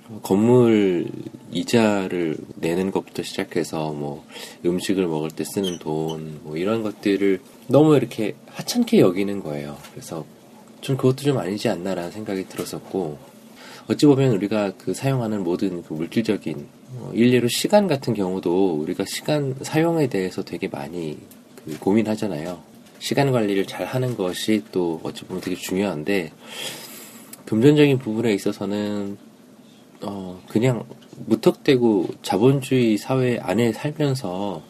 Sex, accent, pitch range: male, native, 90-120 Hz